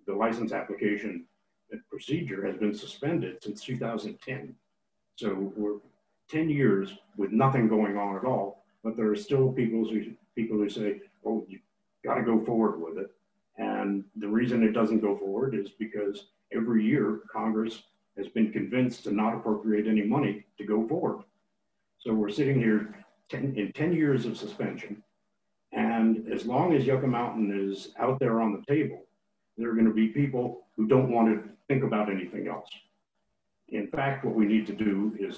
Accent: American